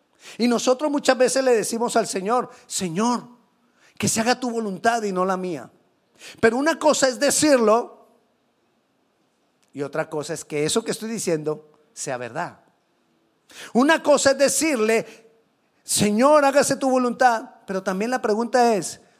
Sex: male